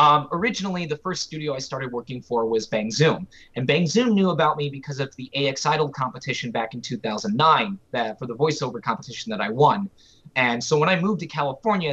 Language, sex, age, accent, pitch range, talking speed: English, male, 20-39, American, 120-170 Hz, 200 wpm